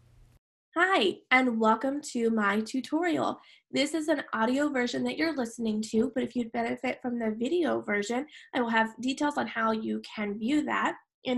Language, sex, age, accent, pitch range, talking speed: English, female, 20-39, American, 230-290 Hz, 180 wpm